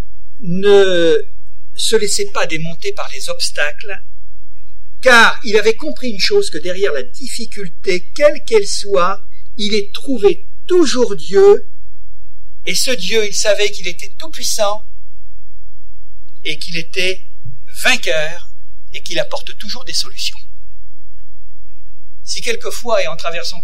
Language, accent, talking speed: French, French, 125 wpm